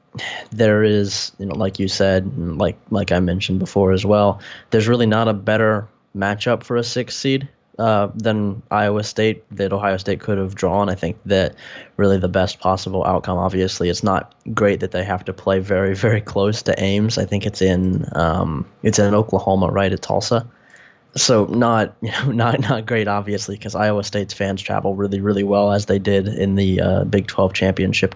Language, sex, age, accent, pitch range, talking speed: English, male, 10-29, American, 95-110 Hz, 195 wpm